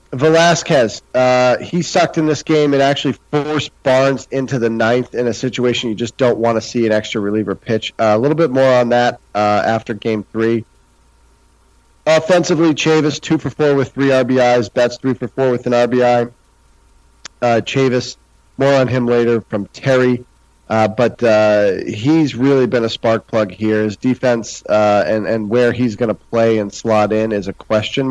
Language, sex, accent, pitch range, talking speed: English, male, American, 110-135 Hz, 185 wpm